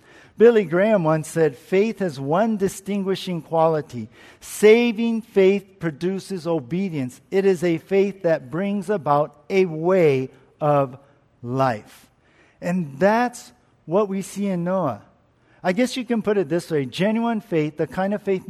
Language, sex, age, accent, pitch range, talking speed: English, male, 50-69, American, 155-205 Hz, 145 wpm